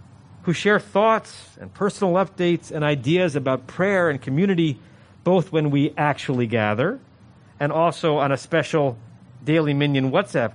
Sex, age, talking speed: male, 40-59, 140 wpm